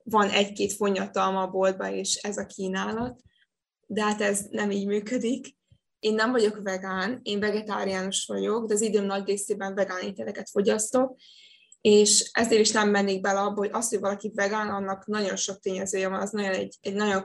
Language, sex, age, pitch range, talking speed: Hungarian, female, 20-39, 190-210 Hz, 175 wpm